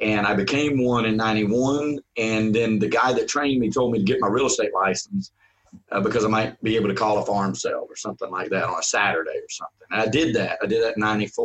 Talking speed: 255 wpm